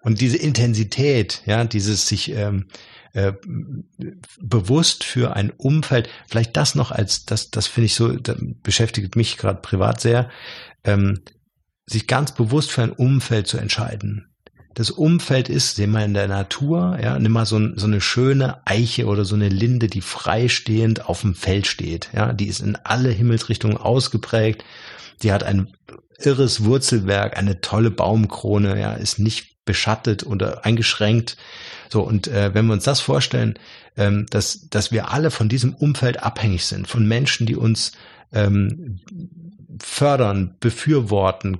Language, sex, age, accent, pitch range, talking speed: German, male, 50-69, German, 105-125 Hz, 155 wpm